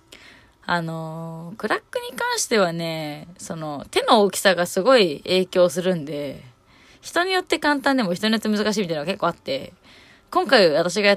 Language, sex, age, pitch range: Japanese, female, 20-39, 165-220 Hz